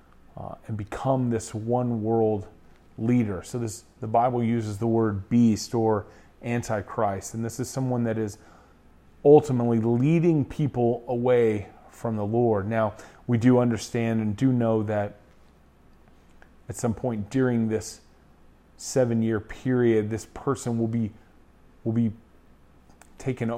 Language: English